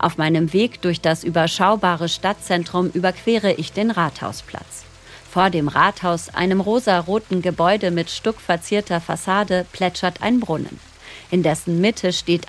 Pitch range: 175-215 Hz